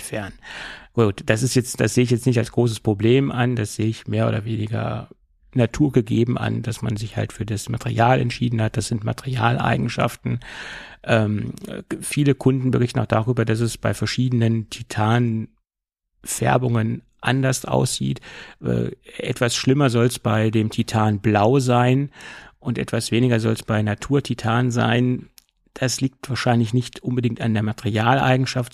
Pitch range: 110-125 Hz